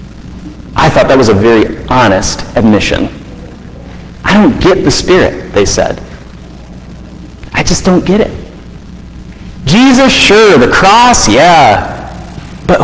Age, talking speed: 40-59, 120 wpm